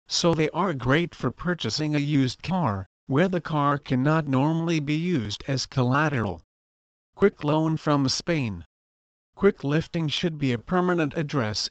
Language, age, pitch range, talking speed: English, 50-69, 120-155 Hz, 150 wpm